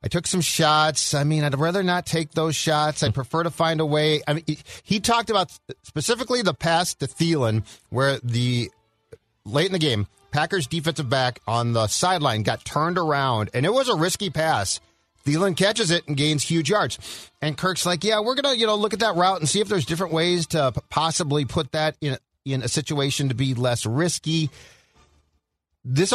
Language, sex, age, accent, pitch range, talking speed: English, male, 40-59, American, 120-165 Hz, 200 wpm